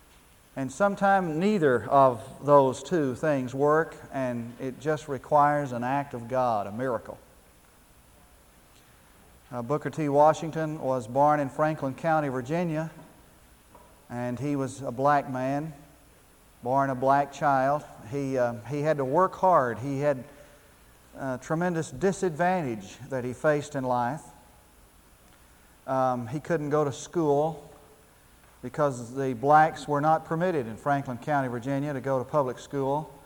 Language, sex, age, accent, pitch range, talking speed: English, male, 40-59, American, 130-155 Hz, 135 wpm